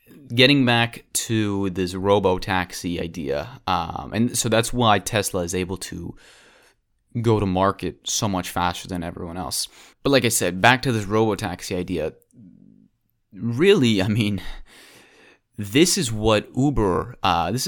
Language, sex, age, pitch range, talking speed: English, male, 30-49, 90-115 Hz, 145 wpm